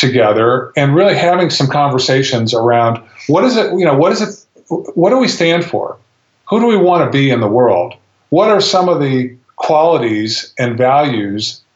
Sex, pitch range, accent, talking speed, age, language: male, 120-145 Hz, American, 190 wpm, 50-69, English